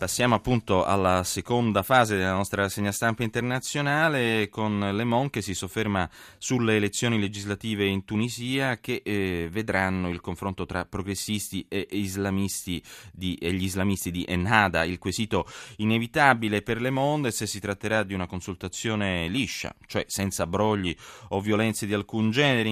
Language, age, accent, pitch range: Italian, 30-49, native, 90-110 Hz